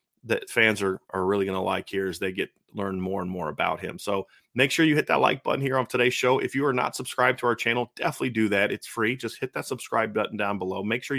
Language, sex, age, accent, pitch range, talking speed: English, male, 30-49, American, 105-125 Hz, 280 wpm